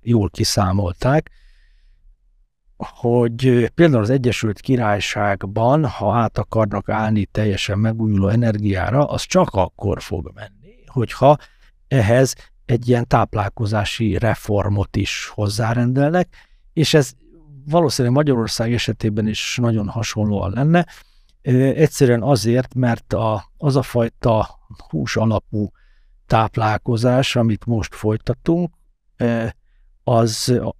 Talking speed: 95 wpm